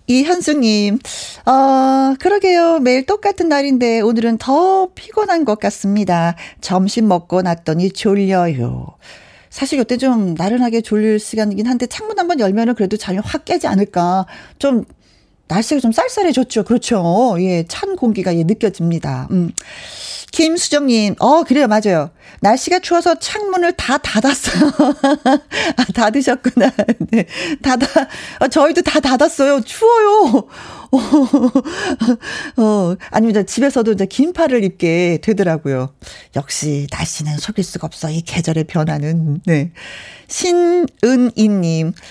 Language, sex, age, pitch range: Korean, female, 40-59, 180-280 Hz